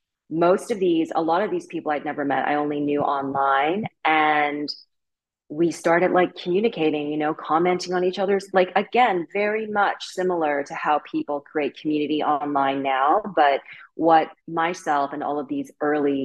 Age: 20-39